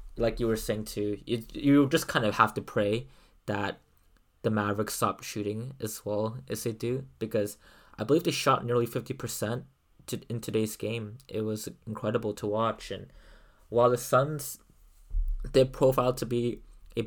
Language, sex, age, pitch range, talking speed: English, male, 20-39, 105-120 Hz, 170 wpm